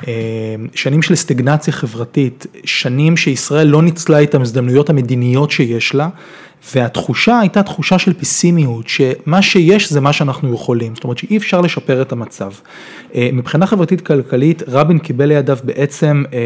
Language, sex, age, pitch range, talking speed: Hebrew, male, 30-49, 125-160 Hz, 140 wpm